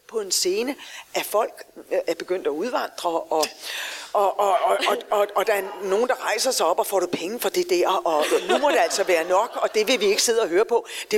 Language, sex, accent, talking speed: Danish, female, native, 265 wpm